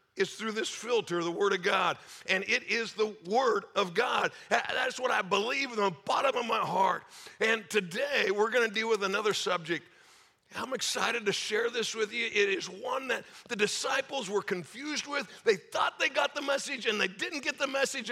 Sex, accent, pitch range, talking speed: male, American, 180-260 Hz, 205 wpm